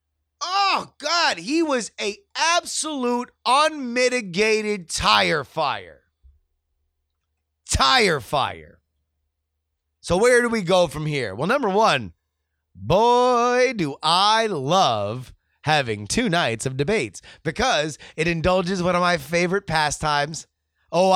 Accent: American